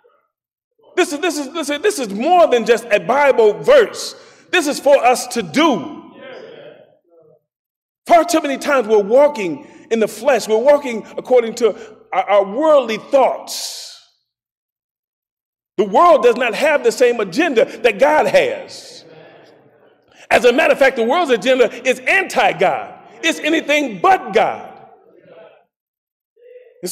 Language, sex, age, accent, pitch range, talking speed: English, male, 40-59, American, 205-305 Hz, 125 wpm